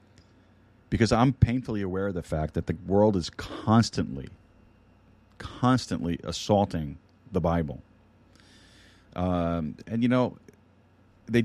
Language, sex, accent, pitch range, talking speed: English, male, American, 90-105 Hz, 110 wpm